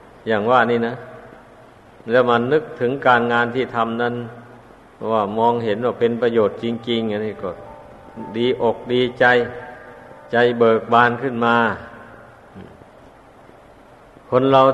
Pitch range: 110-125 Hz